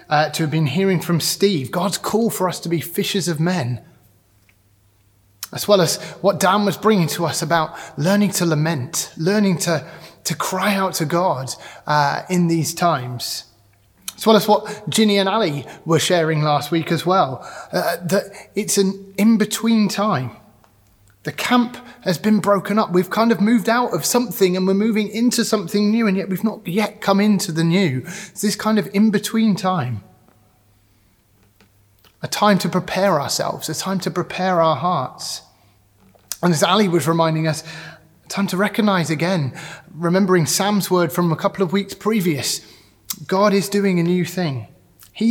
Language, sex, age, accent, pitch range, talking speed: English, male, 30-49, British, 150-200 Hz, 175 wpm